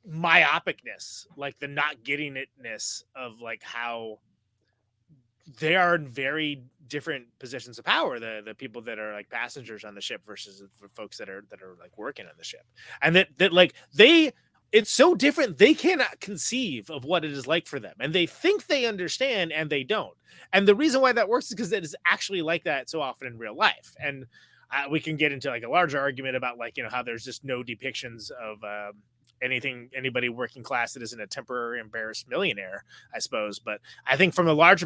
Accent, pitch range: American, 120-185 Hz